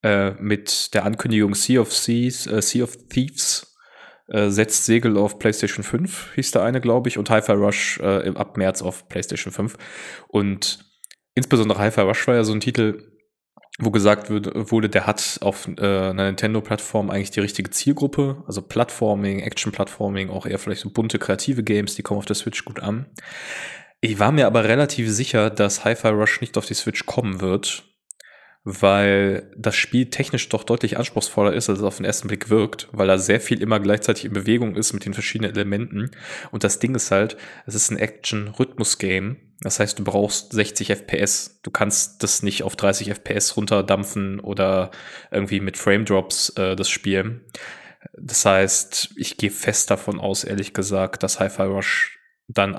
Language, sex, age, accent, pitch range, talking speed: German, male, 20-39, German, 100-110 Hz, 175 wpm